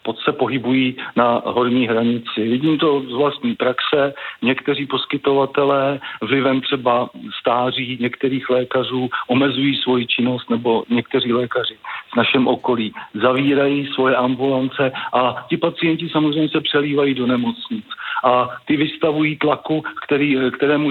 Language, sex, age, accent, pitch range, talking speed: Czech, male, 50-69, native, 125-145 Hz, 125 wpm